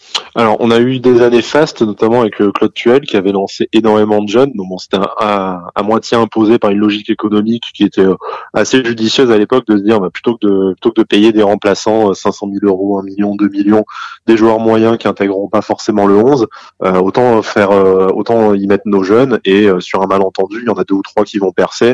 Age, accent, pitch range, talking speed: 20-39, French, 95-115 Hz, 250 wpm